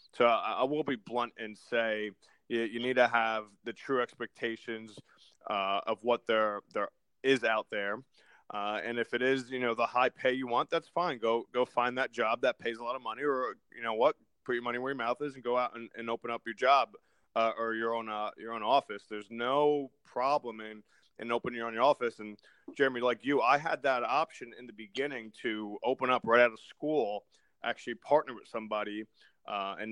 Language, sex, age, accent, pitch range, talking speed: English, male, 20-39, American, 110-130 Hz, 215 wpm